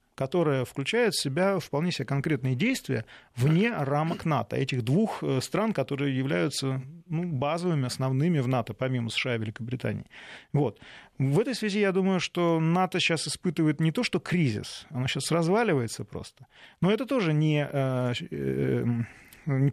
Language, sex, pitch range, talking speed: Russian, male, 130-170 Hz, 145 wpm